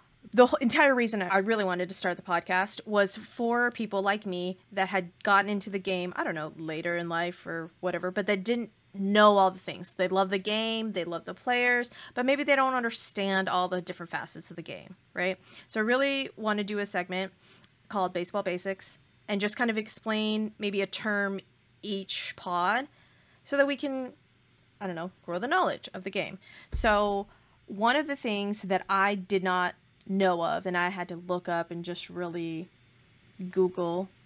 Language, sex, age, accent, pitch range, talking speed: English, female, 30-49, American, 175-210 Hz, 195 wpm